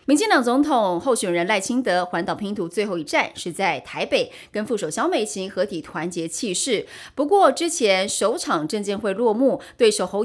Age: 30-49